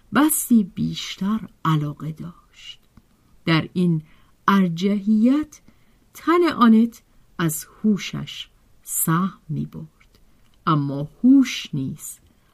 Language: Persian